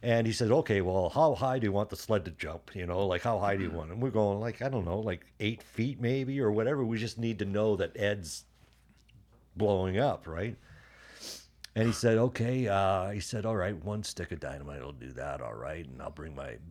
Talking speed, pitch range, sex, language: 245 wpm, 90-115 Hz, male, English